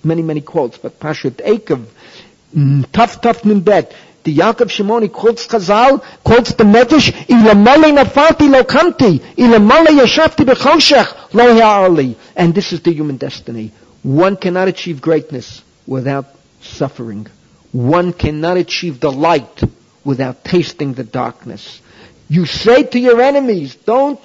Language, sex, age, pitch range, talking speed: English, male, 50-69, 140-225 Hz, 100 wpm